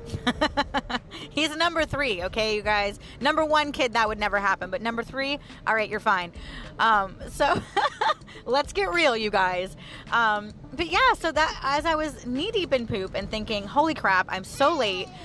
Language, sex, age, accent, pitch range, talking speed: English, female, 30-49, American, 195-285 Hz, 180 wpm